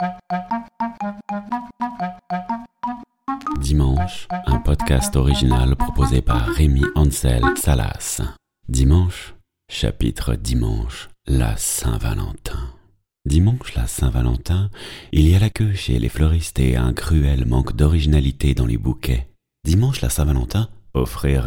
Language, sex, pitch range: French, male, 65-90 Hz